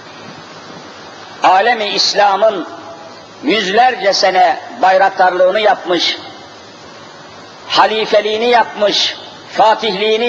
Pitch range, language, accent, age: 180-250 Hz, Turkish, native, 50-69